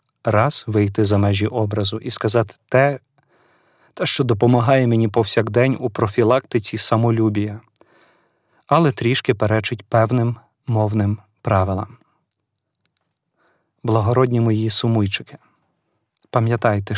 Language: Ukrainian